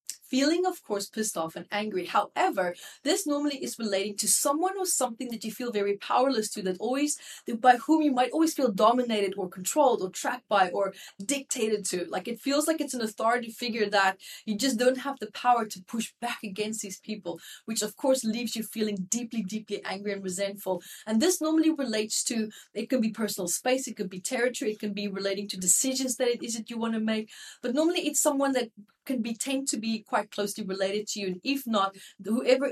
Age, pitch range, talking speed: 30-49, 200-255 Hz, 215 wpm